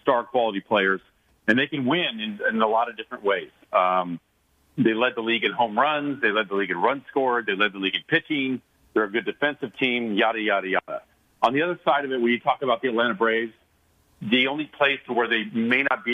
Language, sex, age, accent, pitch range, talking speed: English, male, 50-69, American, 110-140 Hz, 240 wpm